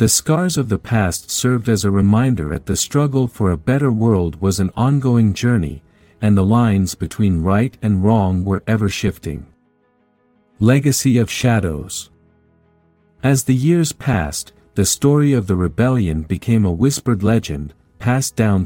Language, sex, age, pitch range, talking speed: English, male, 50-69, 85-125 Hz, 155 wpm